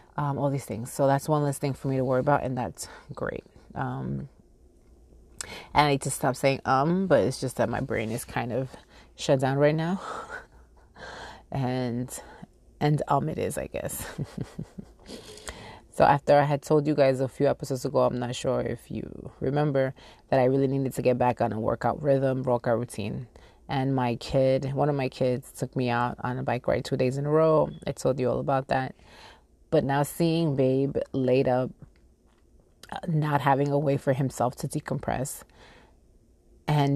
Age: 30-49